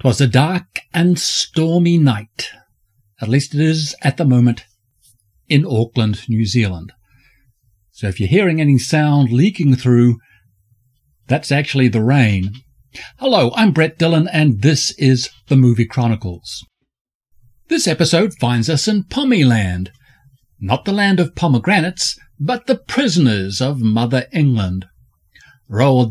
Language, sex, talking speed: English, male, 130 wpm